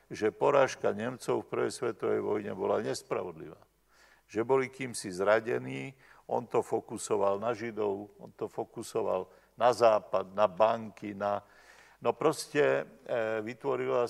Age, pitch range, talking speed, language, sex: 50-69, 105-130 Hz, 125 wpm, Slovak, male